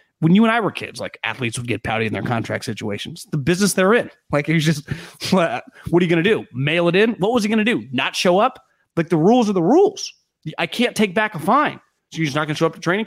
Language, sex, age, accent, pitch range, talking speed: English, male, 30-49, American, 155-235 Hz, 285 wpm